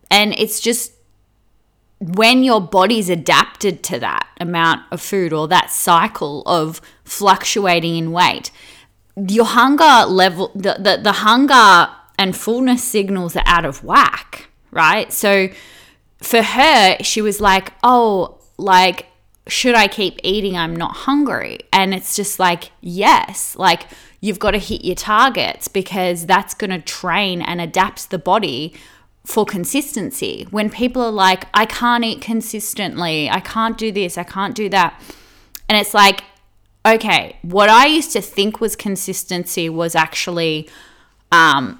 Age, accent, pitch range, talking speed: 20-39, Australian, 180-220 Hz, 145 wpm